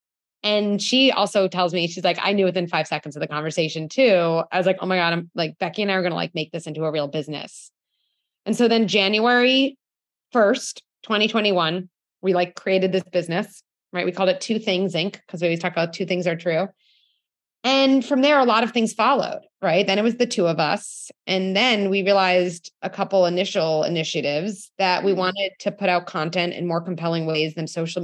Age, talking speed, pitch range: 20-39, 215 wpm, 165-195 Hz